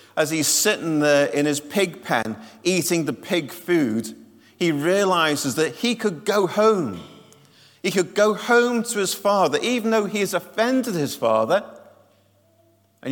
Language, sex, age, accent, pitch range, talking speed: English, male, 40-59, British, 125-205 Hz, 155 wpm